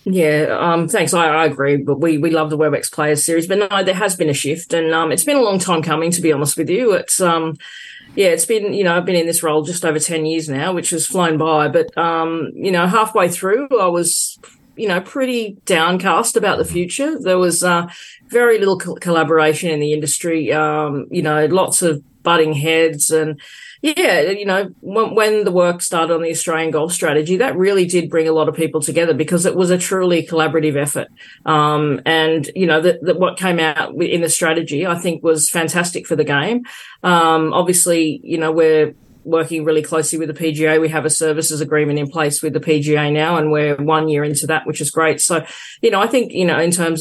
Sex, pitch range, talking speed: female, 155-175 Hz, 225 wpm